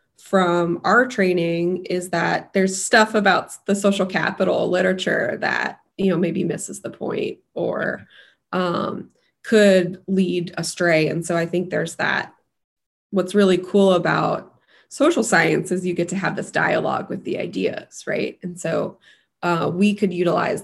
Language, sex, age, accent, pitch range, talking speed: English, female, 20-39, American, 180-195 Hz, 155 wpm